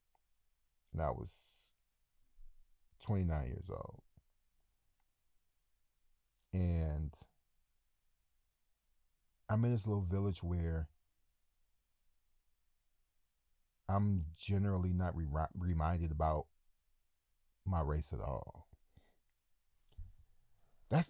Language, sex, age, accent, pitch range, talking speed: English, male, 40-59, American, 75-95 Hz, 70 wpm